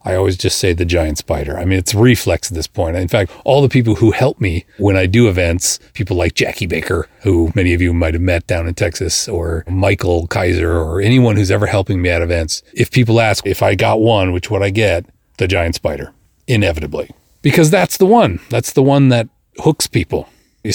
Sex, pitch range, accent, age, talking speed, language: male, 90-120 Hz, American, 40-59, 225 wpm, English